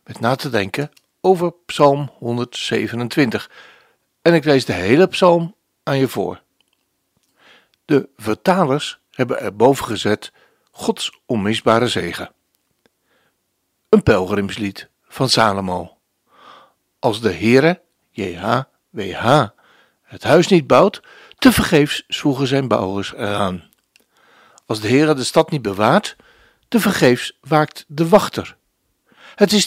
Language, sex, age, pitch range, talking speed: Dutch, male, 60-79, 115-180 Hz, 115 wpm